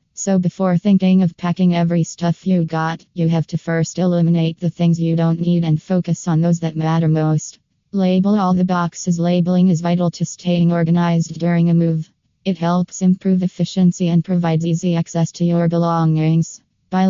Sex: female